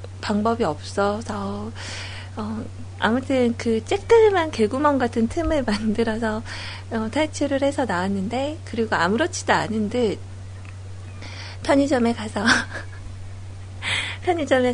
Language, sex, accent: Korean, female, native